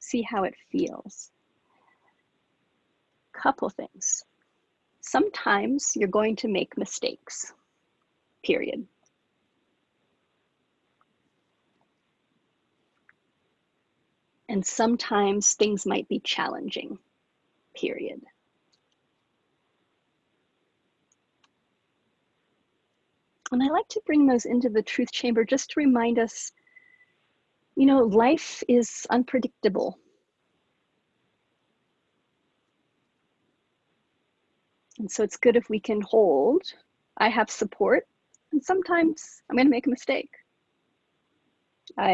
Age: 40-59